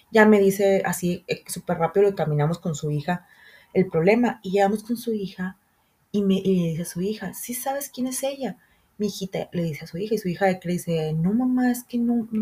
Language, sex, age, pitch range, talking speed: Spanish, female, 30-49, 170-215 Hz, 235 wpm